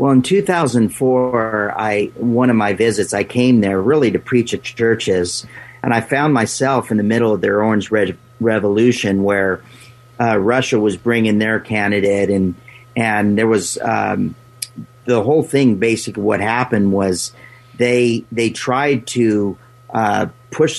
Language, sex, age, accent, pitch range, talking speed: English, male, 50-69, American, 110-125 Hz, 155 wpm